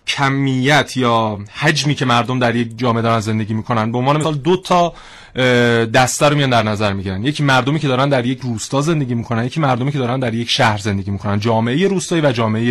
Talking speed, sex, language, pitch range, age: 210 wpm, male, Persian, 125-185 Hz, 30-49